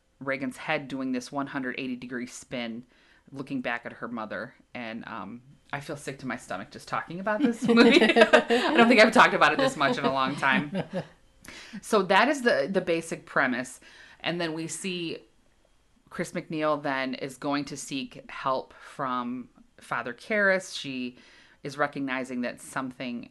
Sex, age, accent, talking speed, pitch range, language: female, 30-49, American, 165 wpm, 130-165 Hz, English